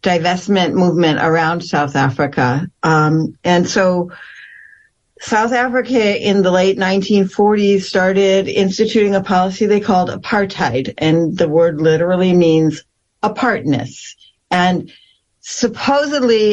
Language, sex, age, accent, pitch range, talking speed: English, female, 50-69, American, 165-210 Hz, 105 wpm